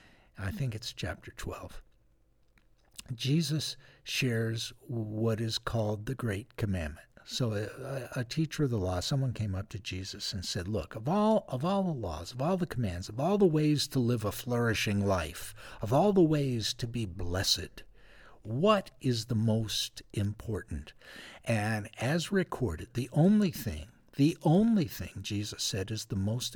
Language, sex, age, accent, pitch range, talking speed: English, male, 60-79, American, 105-130 Hz, 165 wpm